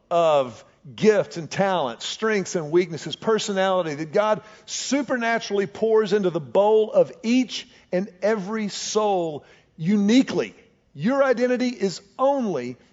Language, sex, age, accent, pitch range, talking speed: English, male, 50-69, American, 185-235 Hz, 115 wpm